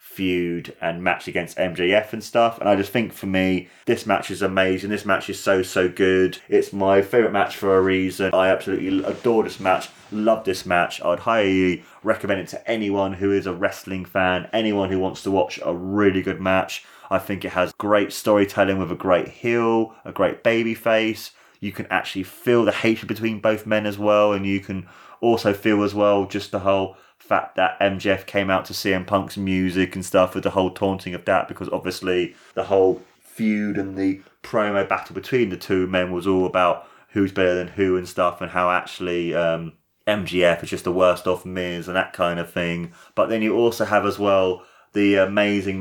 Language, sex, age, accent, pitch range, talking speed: English, male, 20-39, British, 90-105 Hz, 205 wpm